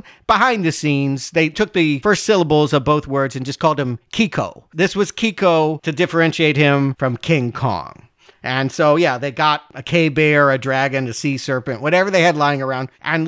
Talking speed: 195 wpm